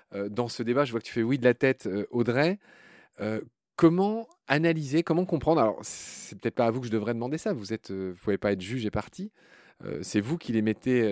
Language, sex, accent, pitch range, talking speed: French, male, French, 110-145 Hz, 235 wpm